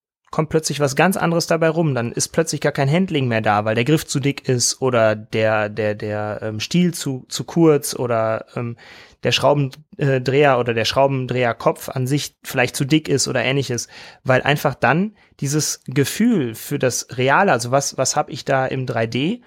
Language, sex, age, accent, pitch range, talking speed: German, male, 30-49, German, 125-160 Hz, 180 wpm